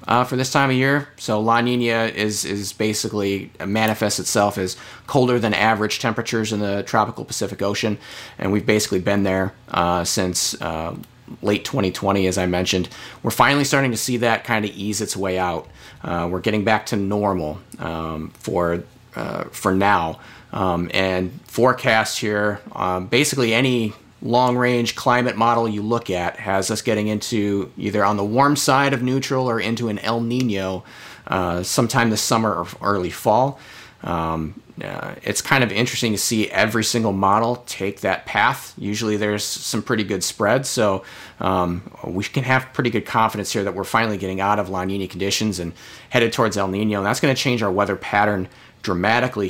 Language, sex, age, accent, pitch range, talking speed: English, male, 30-49, American, 95-120 Hz, 180 wpm